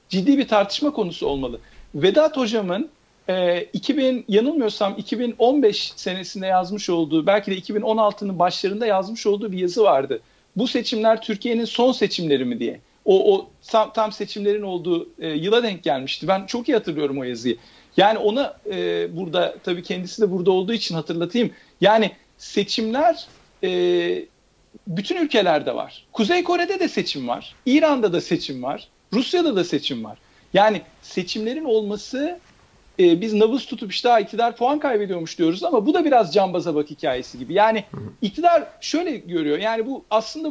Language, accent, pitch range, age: Turkish, native, 190-270 Hz, 50-69